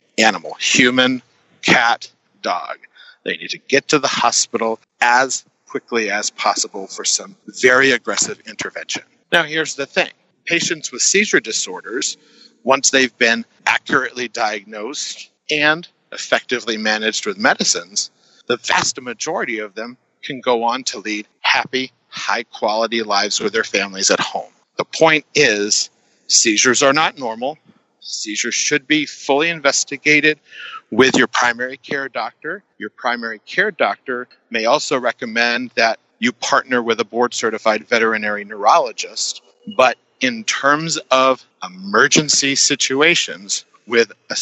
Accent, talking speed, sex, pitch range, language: American, 130 wpm, male, 115-155 Hz, English